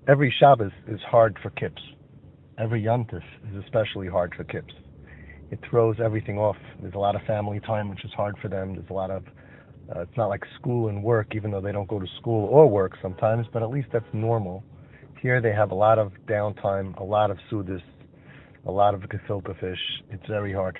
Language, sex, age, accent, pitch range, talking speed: English, male, 30-49, American, 100-130 Hz, 210 wpm